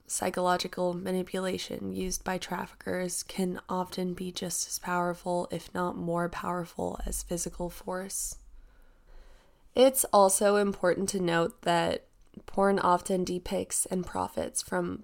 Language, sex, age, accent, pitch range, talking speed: English, female, 20-39, American, 175-190 Hz, 120 wpm